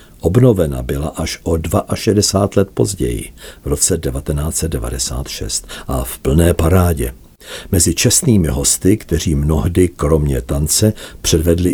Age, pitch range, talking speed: 60-79, 80-100 Hz, 110 wpm